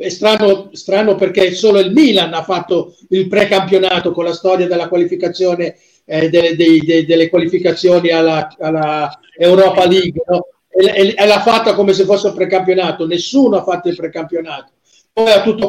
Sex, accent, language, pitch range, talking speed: male, native, Italian, 175-210 Hz, 165 wpm